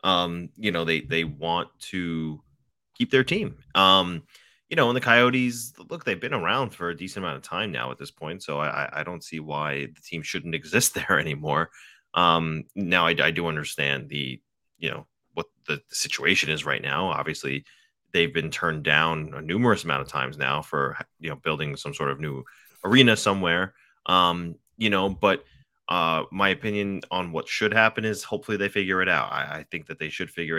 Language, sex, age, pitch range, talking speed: English, male, 30-49, 80-100 Hz, 200 wpm